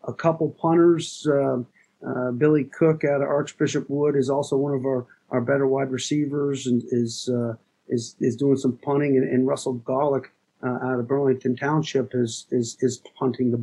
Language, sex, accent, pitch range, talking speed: English, male, American, 120-145 Hz, 185 wpm